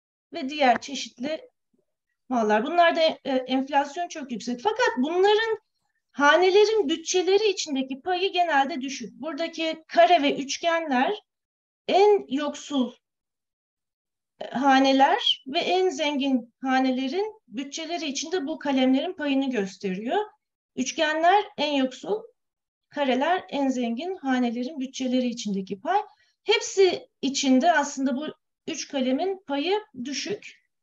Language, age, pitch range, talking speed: Turkish, 40-59, 255-355 Hz, 100 wpm